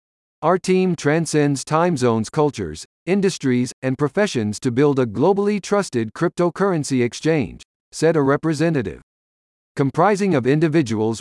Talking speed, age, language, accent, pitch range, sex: 120 wpm, 50-69, English, American, 125-180 Hz, male